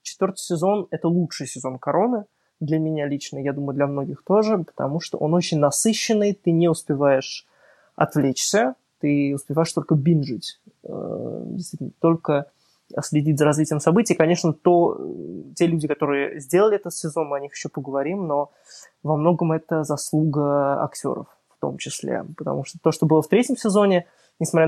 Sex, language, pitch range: male, Ukrainian, 145-175 Hz